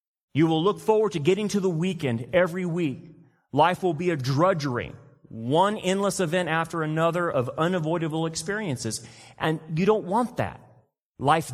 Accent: American